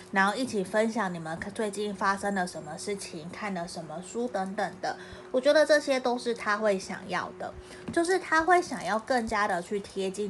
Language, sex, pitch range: Chinese, female, 175-215 Hz